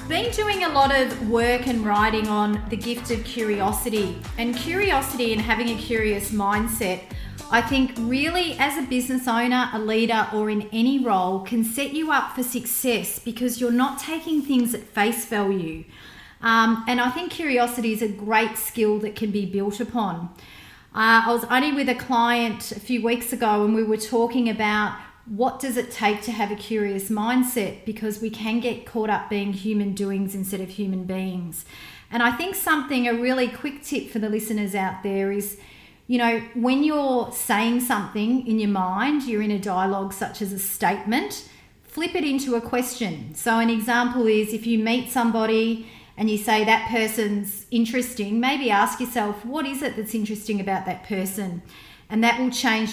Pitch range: 210-250 Hz